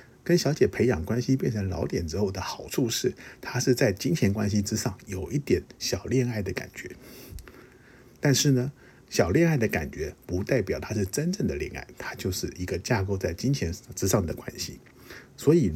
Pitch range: 90-125 Hz